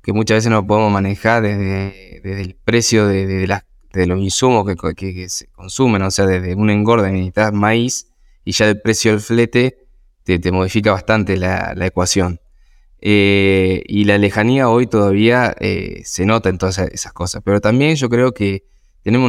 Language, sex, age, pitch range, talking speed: English, male, 20-39, 95-110 Hz, 185 wpm